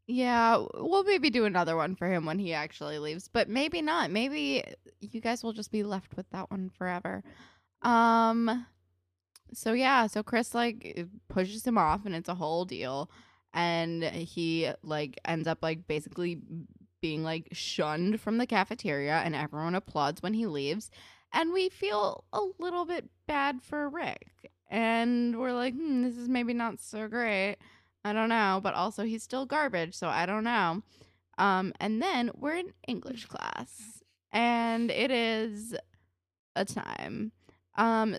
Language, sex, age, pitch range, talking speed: English, female, 20-39, 160-230 Hz, 160 wpm